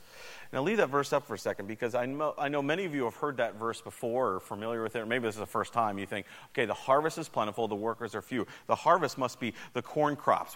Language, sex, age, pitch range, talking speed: English, male, 40-59, 125-170 Hz, 290 wpm